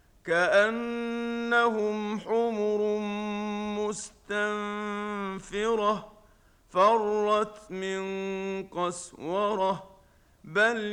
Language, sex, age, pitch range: Arabic, male, 50-69, 190-210 Hz